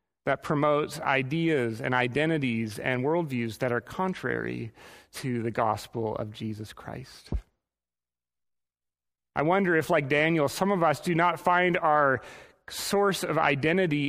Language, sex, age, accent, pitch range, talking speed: English, male, 30-49, American, 125-165 Hz, 130 wpm